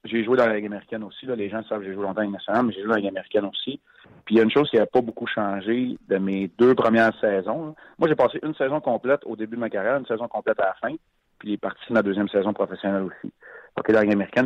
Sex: male